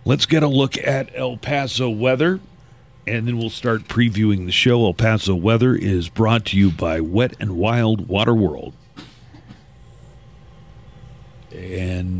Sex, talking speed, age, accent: male, 145 wpm, 40-59, American